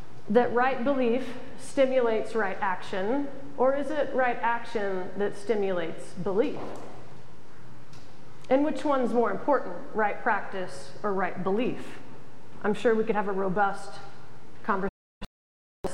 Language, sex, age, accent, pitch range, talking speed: English, female, 30-49, American, 195-260 Hz, 120 wpm